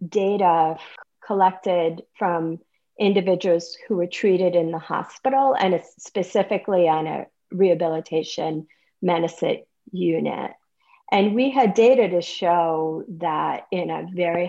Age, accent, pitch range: 40-59, American, 170-210 Hz